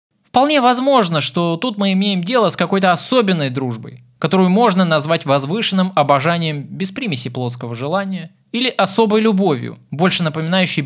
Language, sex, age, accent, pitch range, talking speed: Russian, male, 20-39, native, 140-210 Hz, 140 wpm